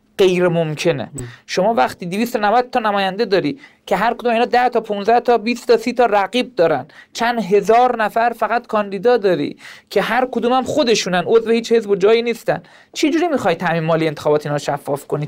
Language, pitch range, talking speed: Persian, 195-250 Hz, 190 wpm